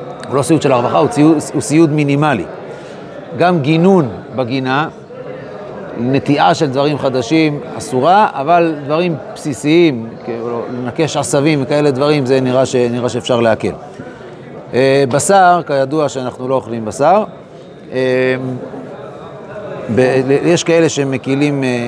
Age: 30-49